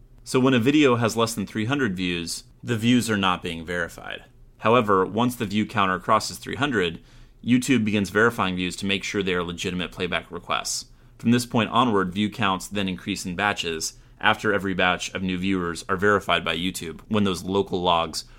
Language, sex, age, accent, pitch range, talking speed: English, male, 30-49, American, 90-120 Hz, 190 wpm